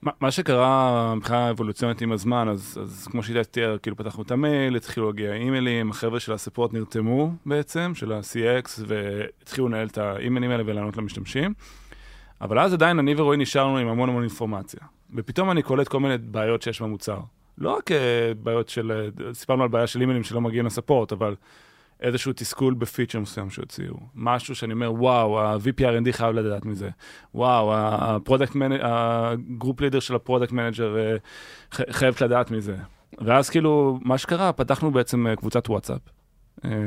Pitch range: 110-135 Hz